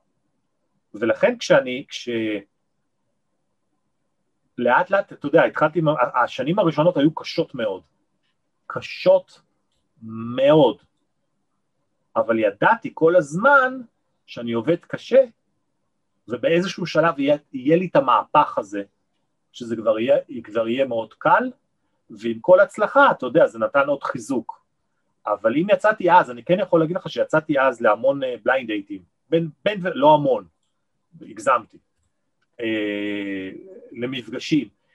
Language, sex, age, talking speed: Hebrew, male, 40-59, 115 wpm